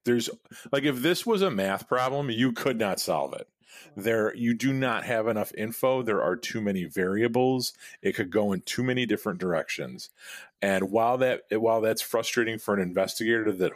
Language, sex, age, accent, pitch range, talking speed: English, male, 30-49, American, 85-115 Hz, 190 wpm